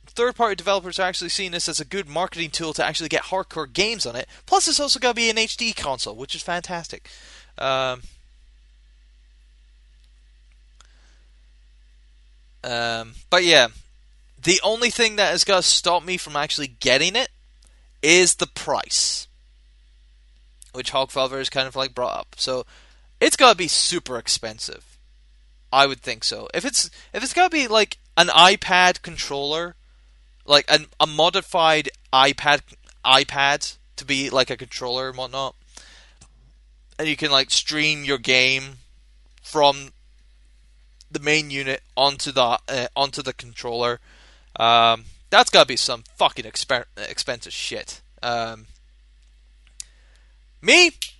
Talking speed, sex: 140 wpm, male